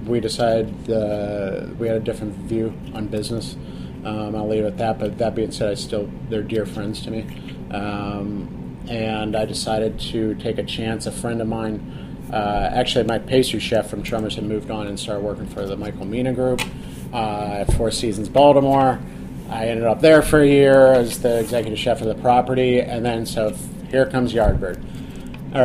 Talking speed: 195 wpm